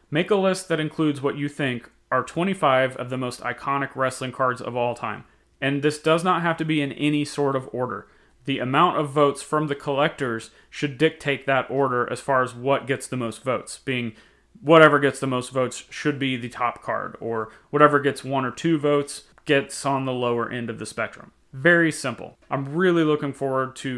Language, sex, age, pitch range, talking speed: English, male, 30-49, 130-150 Hz, 210 wpm